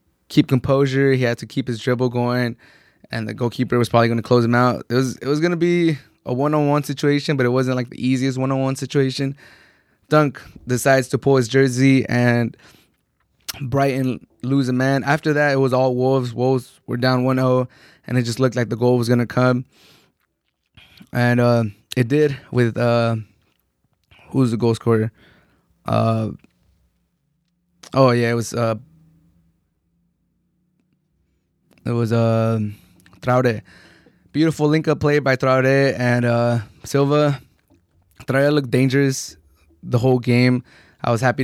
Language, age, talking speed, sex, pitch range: English, 20-39, 155 wpm, male, 120-135 Hz